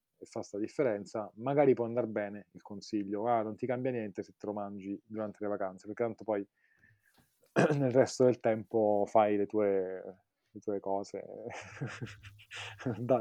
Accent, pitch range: native, 105-125 Hz